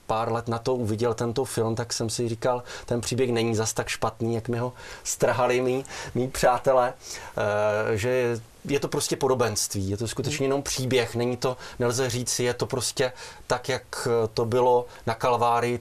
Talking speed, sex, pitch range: 180 wpm, male, 115-125 Hz